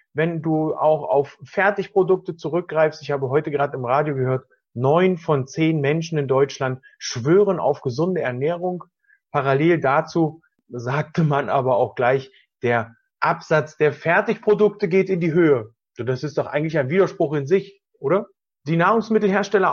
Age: 30-49